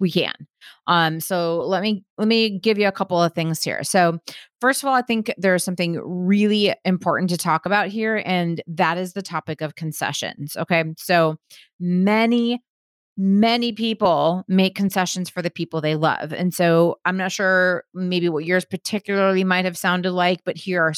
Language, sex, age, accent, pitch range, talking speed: English, female, 30-49, American, 160-195 Hz, 180 wpm